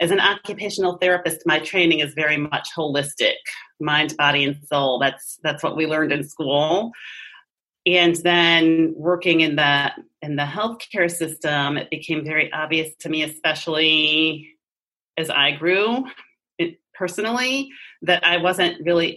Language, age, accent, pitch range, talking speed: English, 30-49, American, 145-175 Hz, 140 wpm